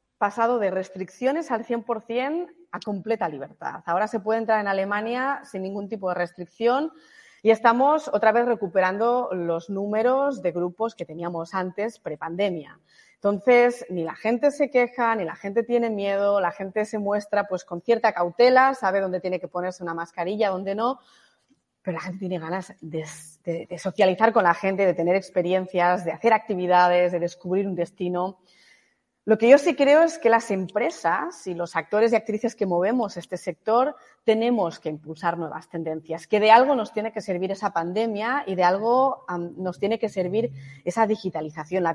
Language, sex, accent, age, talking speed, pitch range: Spanish, female, Spanish, 30-49, 175 wpm, 180-230 Hz